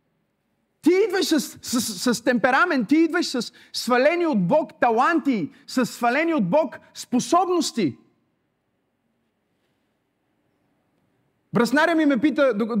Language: Bulgarian